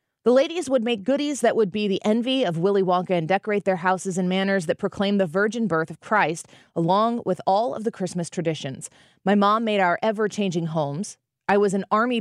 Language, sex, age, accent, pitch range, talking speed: English, female, 30-49, American, 180-230 Hz, 210 wpm